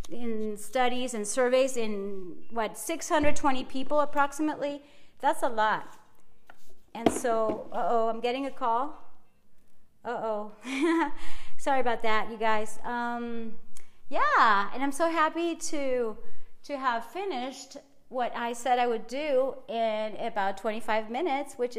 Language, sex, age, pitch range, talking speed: English, female, 40-59, 230-295 Hz, 125 wpm